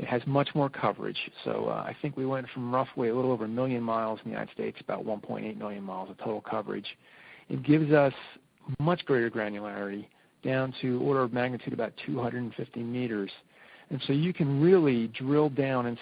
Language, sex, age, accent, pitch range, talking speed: English, male, 40-59, American, 120-140 Hz, 195 wpm